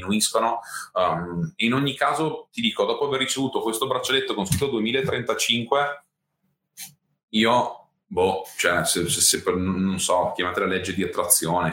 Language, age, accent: Italian, 30-49, native